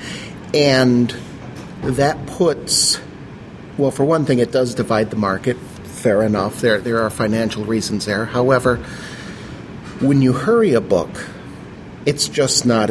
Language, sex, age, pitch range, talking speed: English, male, 40-59, 110-135 Hz, 135 wpm